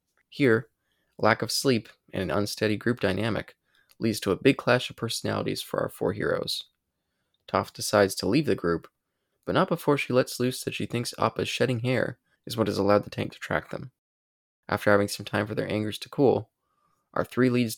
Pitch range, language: 100-125 Hz, English